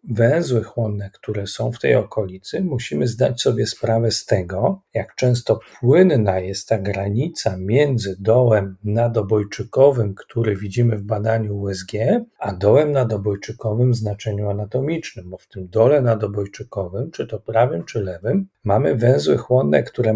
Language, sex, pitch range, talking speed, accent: Polish, male, 105-125 Hz, 140 wpm, native